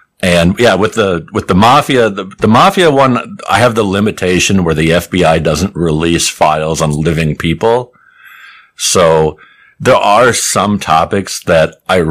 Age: 50-69